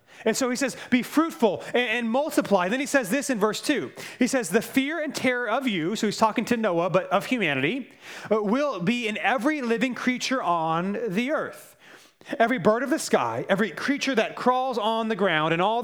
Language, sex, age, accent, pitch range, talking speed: English, male, 30-49, American, 195-255 Hz, 205 wpm